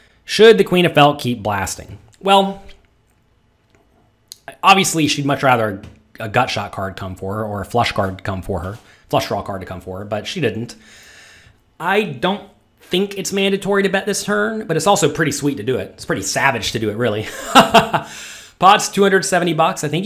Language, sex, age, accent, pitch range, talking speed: English, male, 30-49, American, 110-155 Hz, 195 wpm